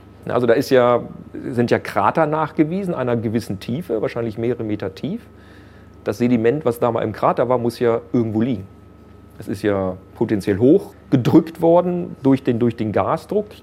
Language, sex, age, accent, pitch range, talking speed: German, male, 40-59, German, 105-130 Hz, 170 wpm